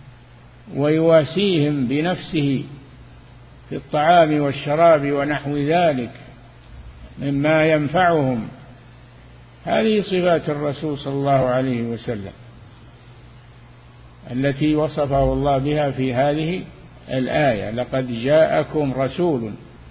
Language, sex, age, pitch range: Arabic, male, 50-69, 120-155 Hz